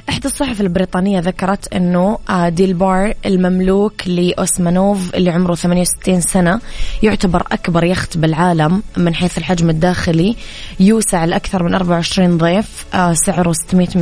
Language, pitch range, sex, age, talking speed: Arabic, 170-195 Hz, female, 20-39, 120 wpm